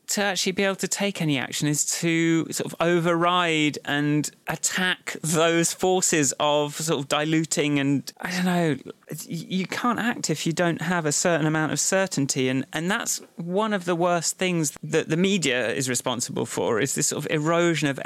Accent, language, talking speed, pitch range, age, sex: British, English, 190 wpm, 135-175 Hz, 30-49, male